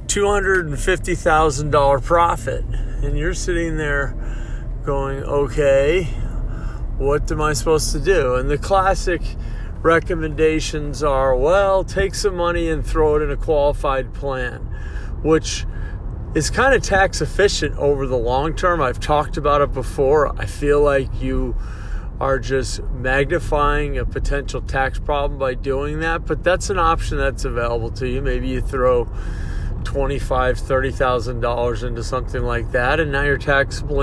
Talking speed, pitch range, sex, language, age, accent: 150 wpm, 125-155 Hz, male, English, 40-59, American